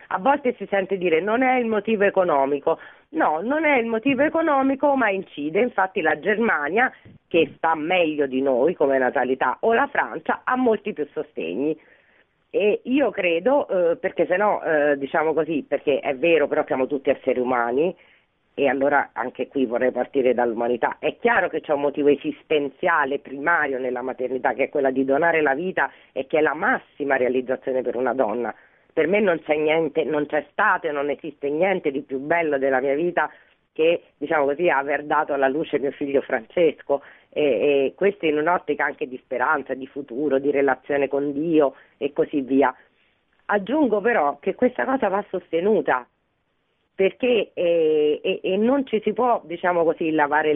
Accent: native